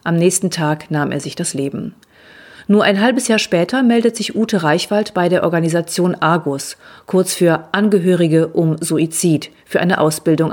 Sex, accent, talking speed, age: female, German, 165 wpm, 40-59